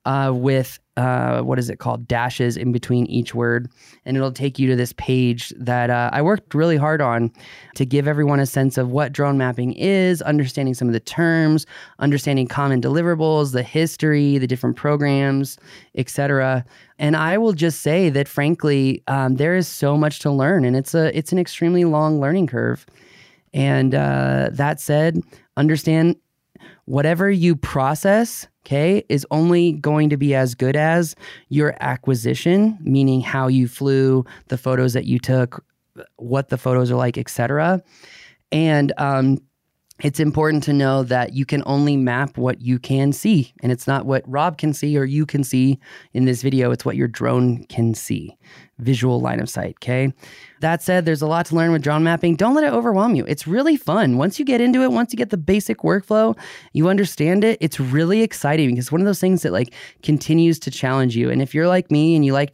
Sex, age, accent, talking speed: male, 20-39, American, 195 wpm